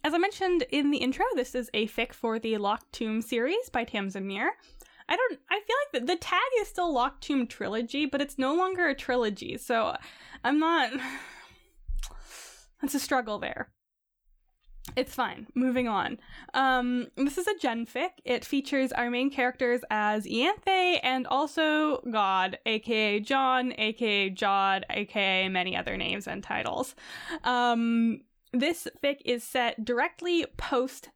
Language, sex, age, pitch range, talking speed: English, female, 10-29, 225-295 Hz, 155 wpm